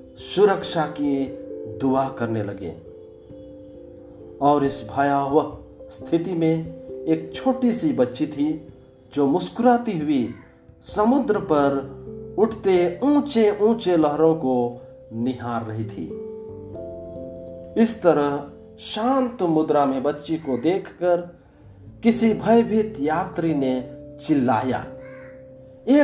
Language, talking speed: Hindi, 95 wpm